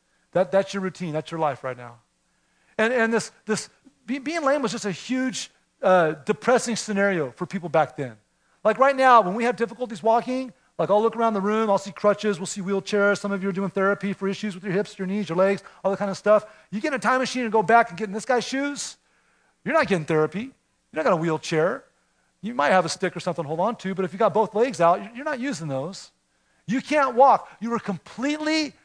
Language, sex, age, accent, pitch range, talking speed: English, male, 40-59, American, 180-245 Hz, 250 wpm